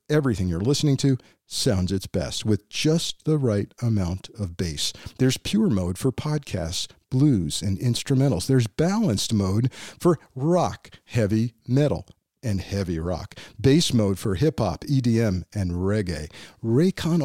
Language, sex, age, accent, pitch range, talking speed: English, male, 50-69, American, 105-155 Hz, 140 wpm